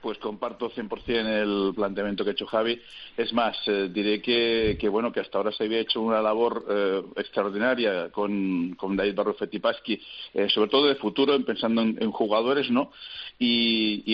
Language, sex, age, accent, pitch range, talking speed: Spanish, male, 40-59, Spanish, 100-120 Hz, 185 wpm